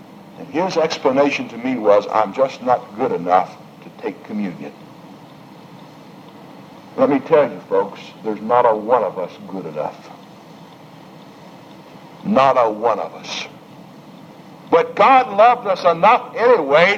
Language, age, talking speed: English, 60-79, 135 wpm